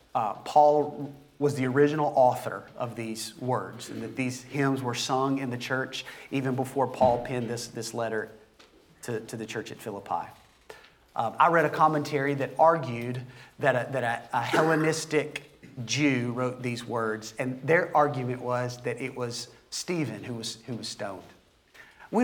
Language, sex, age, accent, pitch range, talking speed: English, male, 40-59, American, 120-150 Hz, 160 wpm